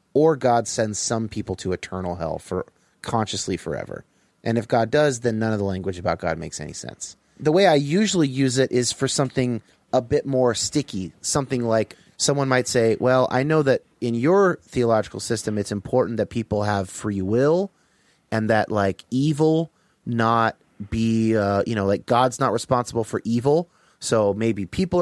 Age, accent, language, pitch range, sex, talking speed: 30-49, American, English, 105-145 Hz, male, 180 wpm